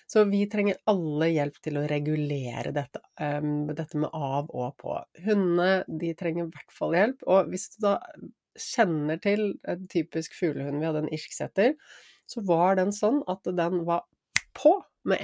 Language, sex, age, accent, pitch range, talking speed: English, female, 30-49, Swedish, 150-185 Hz, 145 wpm